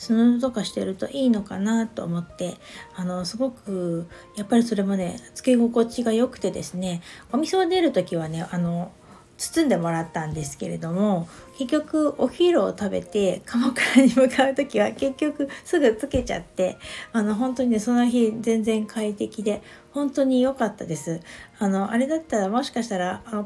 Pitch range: 180-245 Hz